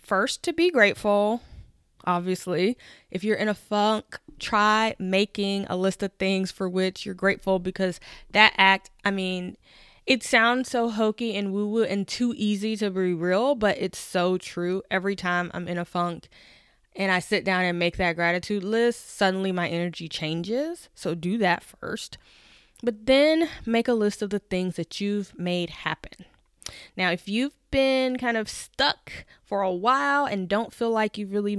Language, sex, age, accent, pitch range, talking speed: English, female, 10-29, American, 185-220 Hz, 175 wpm